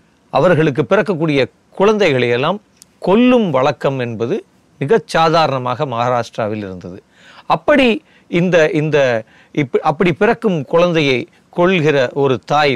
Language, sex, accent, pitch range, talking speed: Tamil, male, native, 125-180 Hz, 85 wpm